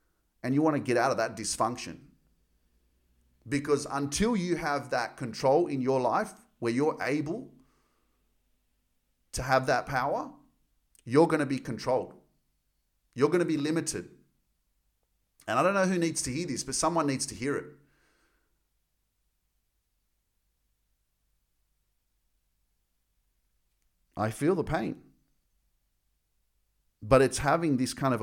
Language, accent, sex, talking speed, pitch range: English, Australian, male, 130 wpm, 85-135 Hz